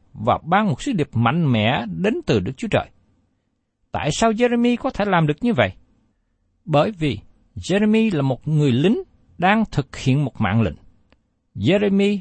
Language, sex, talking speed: Vietnamese, male, 170 wpm